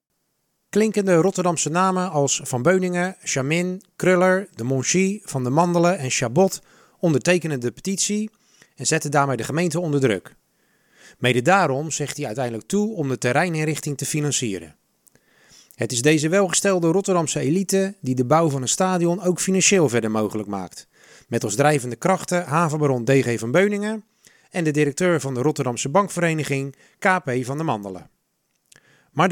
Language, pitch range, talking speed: Dutch, 135-185 Hz, 150 wpm